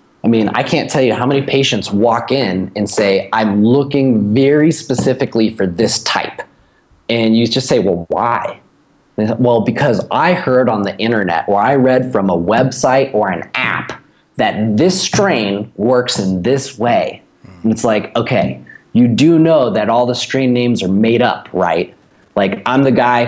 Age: 30-49